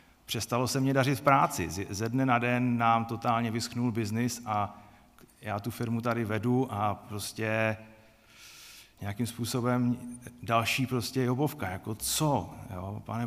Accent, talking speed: native, 135 wpm